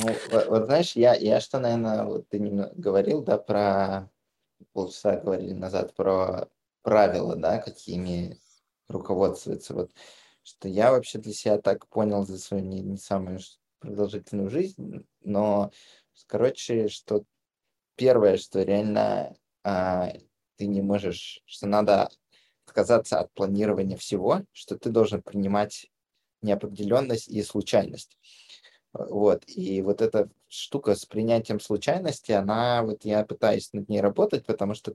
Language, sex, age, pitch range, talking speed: Russian, male, 20-39, 100-115 Hz, 125 wpm